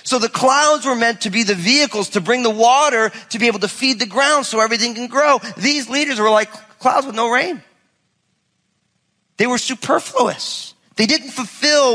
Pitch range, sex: 205-260 Hz, male